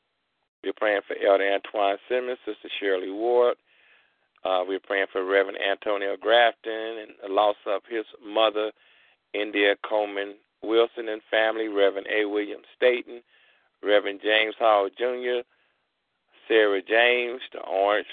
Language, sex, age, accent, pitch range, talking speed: English, male, 50-69, American, 100-125 Hz, 130 wpm